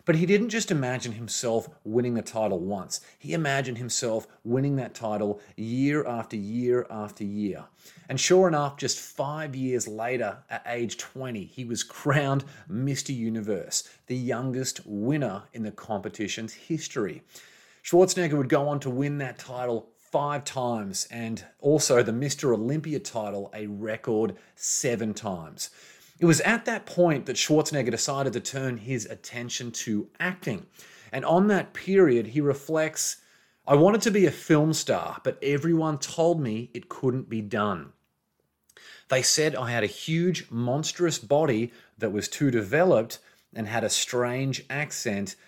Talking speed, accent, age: 150 wpm, Australian, 30-49